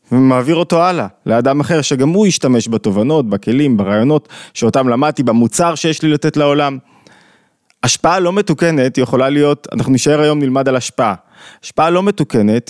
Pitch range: 120-160 Hz